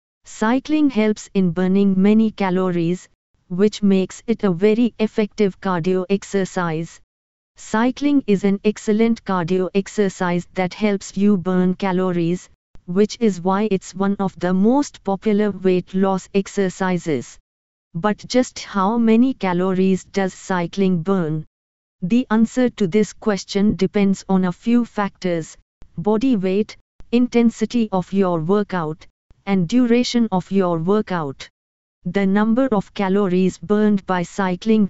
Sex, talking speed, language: female, 125 wpm, English